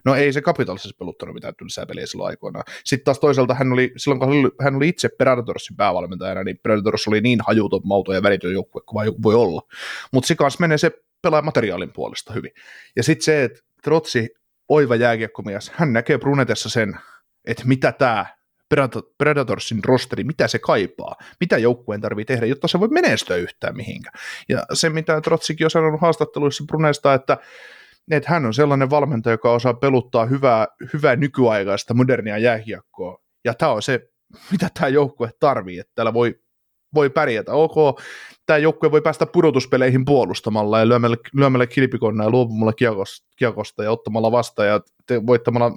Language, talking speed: Finnish, 165 wpm